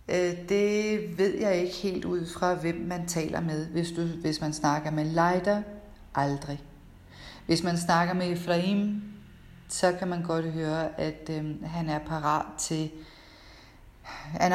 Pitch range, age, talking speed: 160-180 Hz, 40-59, 150 wpm